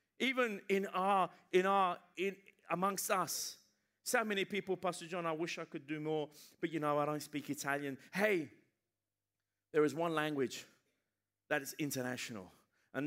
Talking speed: 160 wpm